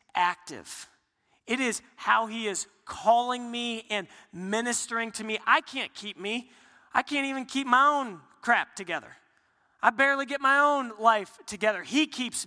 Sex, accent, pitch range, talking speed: male, American, 205-245 Hz, 160 wpm